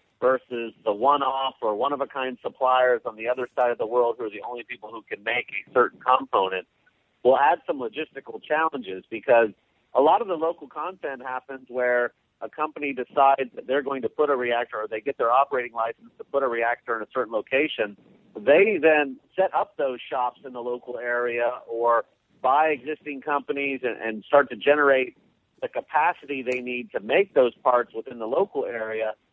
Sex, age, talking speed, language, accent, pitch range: male, 50-69, 190 wpm, English, American, 125-150 Hz